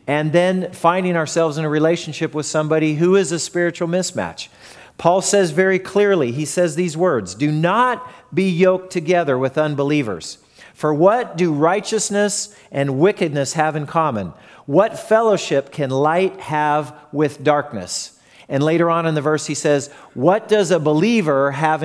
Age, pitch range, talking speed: 40-59, 140-175 Hz, 160 wpm